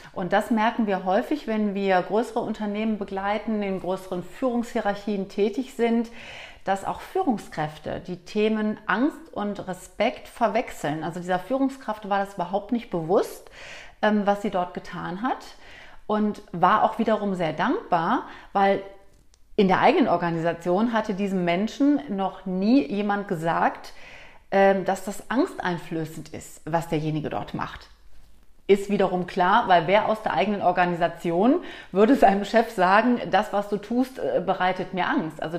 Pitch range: 185-225 Hz